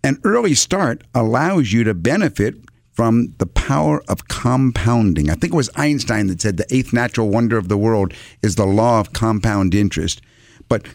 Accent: American